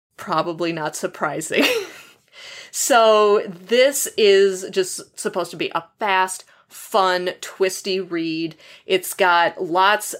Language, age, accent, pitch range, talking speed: English, 30-49, American, 170-210 Hz, 105 wpm